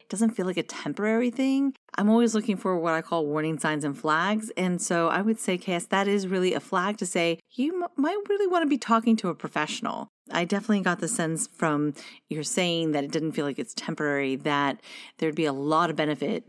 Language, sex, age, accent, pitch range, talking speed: English, female, 30-49, American, 155-210 Hz, 225 wpm